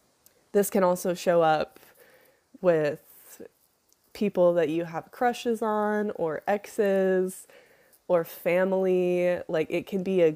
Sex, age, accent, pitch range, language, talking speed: female, 20-39, American, 155-185 Hz, English, 120 wpm